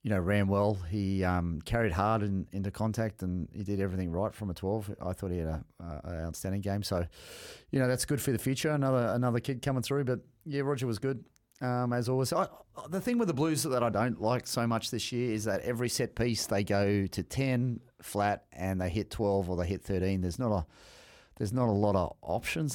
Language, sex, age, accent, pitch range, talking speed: English, male, 30-49, Australian, 95-125 Hz, 225 wpm